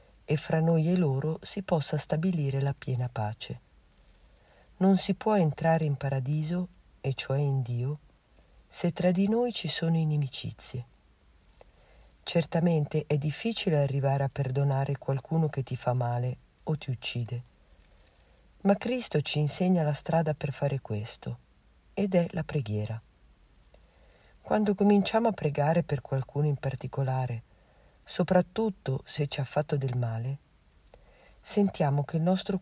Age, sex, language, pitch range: 50-69, female, Italian, 125-170 Hz